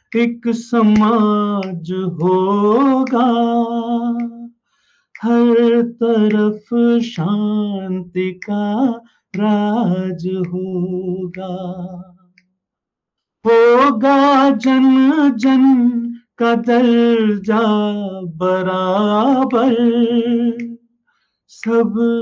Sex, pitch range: male, 180-235 Hz